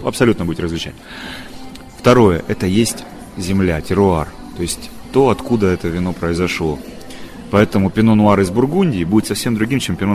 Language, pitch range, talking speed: Russian, 90-115 Hz, 150 wpm